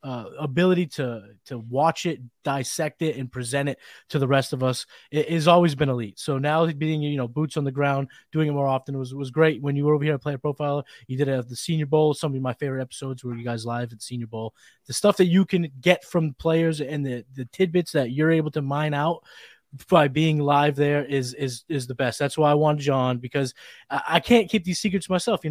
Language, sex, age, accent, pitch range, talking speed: English, male, 20-39, American, 130-180 Hz, 245 wpm